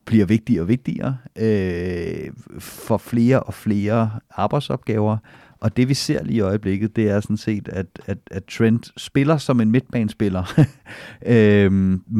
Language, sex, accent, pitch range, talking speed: Danish, male, native, 100-120 Hz, 150 wpm